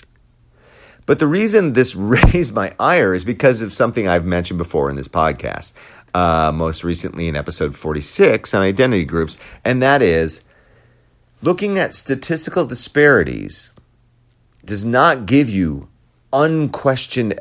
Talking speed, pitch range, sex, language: 130 wpm, 95-130 Hz, male, English